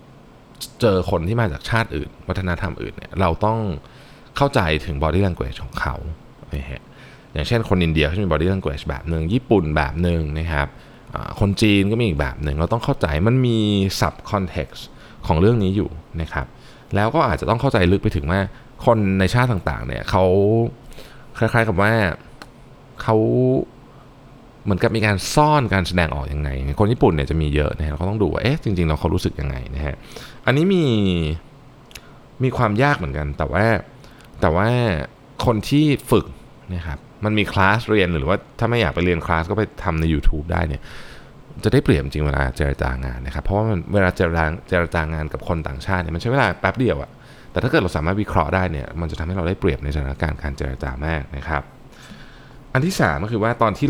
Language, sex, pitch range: Thai, male, 80-115 Hz